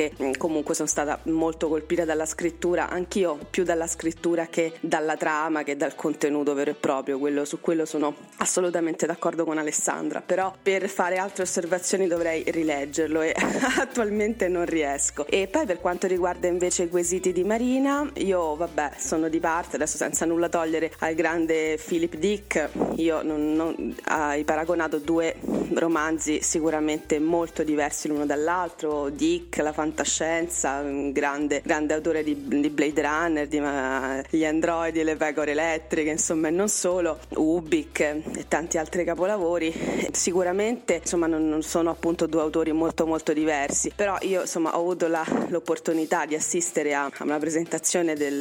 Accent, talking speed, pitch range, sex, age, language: native, 150 wpm, 155-175 Hz, female, 30-49, Italian